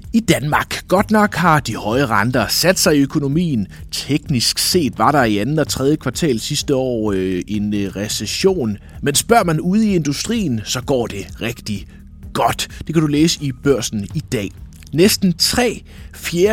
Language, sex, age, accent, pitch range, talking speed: Danish, male, 30-49, native, 105-155 Hz, 170 wpm